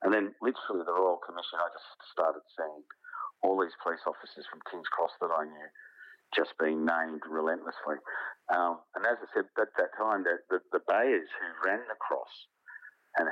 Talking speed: 185 wpm